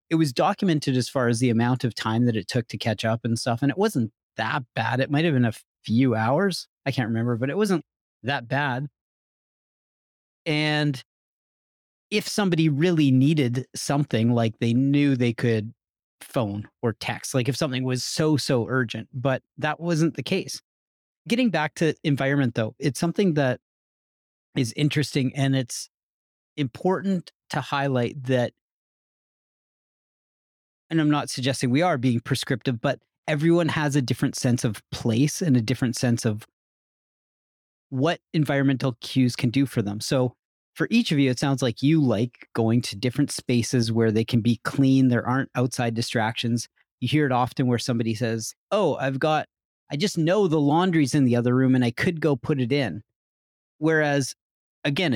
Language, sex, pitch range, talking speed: English, male, 120-150 Hz, 170 wpm